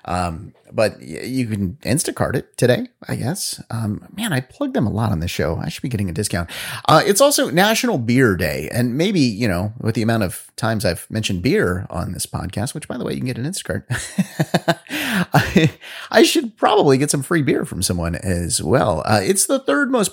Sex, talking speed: male, 215 wpm